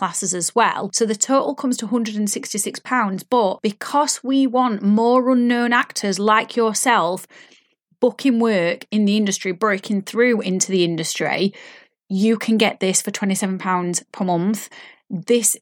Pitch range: 195-240 Hz